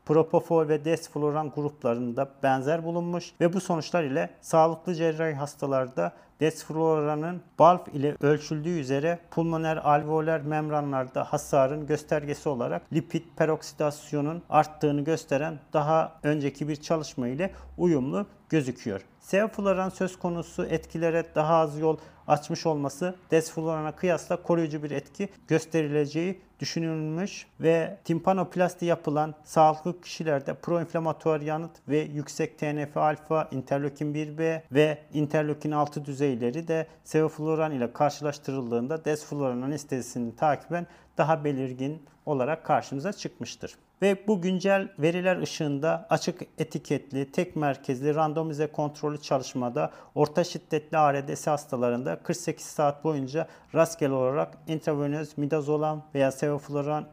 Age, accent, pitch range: 40-59, native, 145-165 Hz